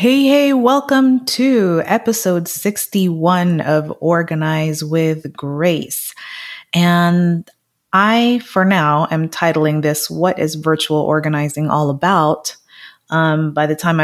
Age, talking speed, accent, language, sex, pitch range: 30-49, 115 wpm, American, English, female, 155-195 Hz